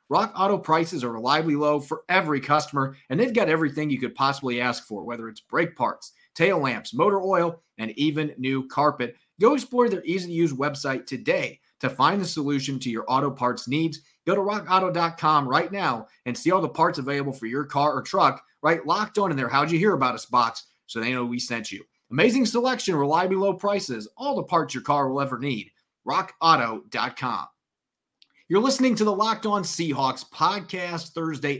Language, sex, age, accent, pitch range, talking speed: English, male, 30-49, American, 130-165 Hz, 190 wpm